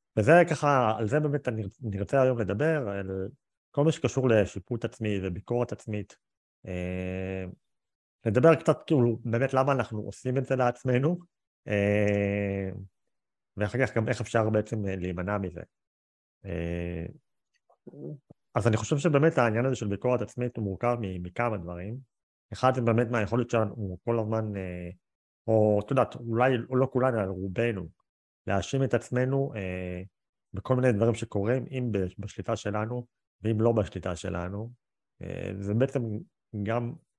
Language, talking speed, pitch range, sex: Hebrew, 130 wpm, 95-125 Hz, male